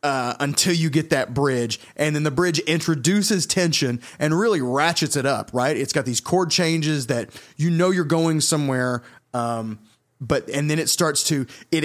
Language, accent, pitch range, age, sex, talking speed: English, American, 125-165 Hz, 30-49, male, 185 wpm